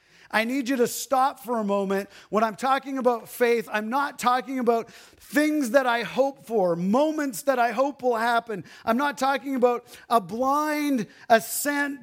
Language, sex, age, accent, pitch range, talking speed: English, male, 40-59, American, 215-270 Hz, 175 wpm